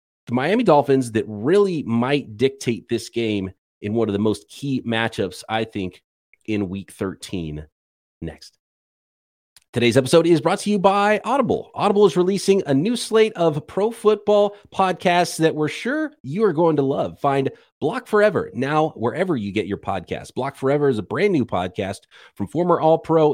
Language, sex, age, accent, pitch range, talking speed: English, male, 30-49, American, 115-175 Hz, 170 wpm